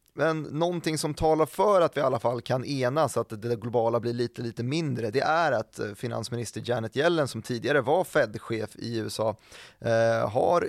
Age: 20-39